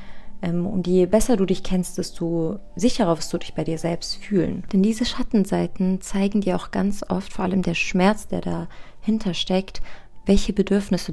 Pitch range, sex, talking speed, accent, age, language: 175-200 Hz, female, 175 wpm, German, 30-49, German